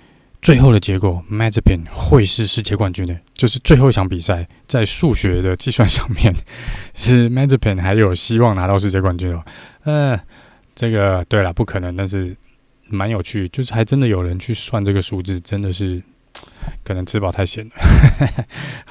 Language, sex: Chinese, male